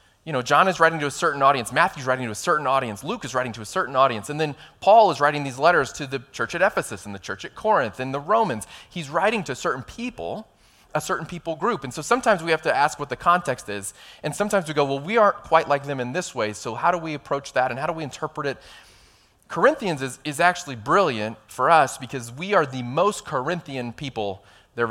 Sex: male